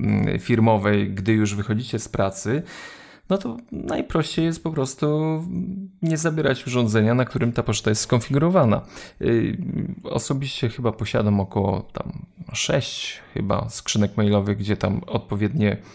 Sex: male